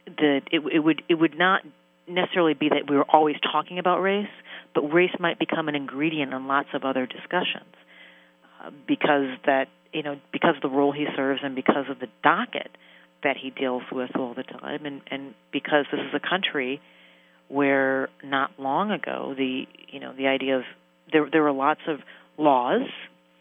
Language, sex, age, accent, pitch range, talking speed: English, female, 40-59, American, 125-155 Hz, 185 wpm